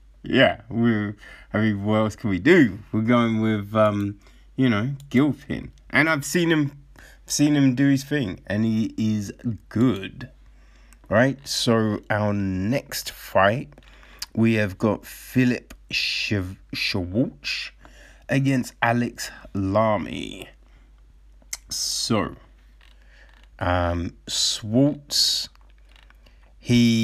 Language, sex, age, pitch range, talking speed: English, male, 30-49, 95-120 Hz, 105 wpm